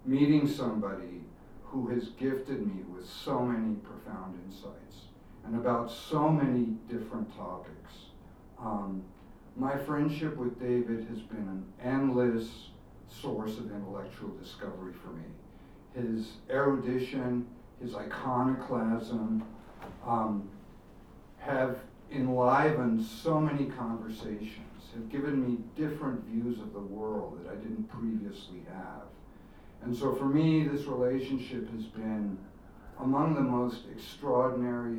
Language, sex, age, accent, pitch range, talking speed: English, male, 60-79, American, 110-130 Hz, 115 wpm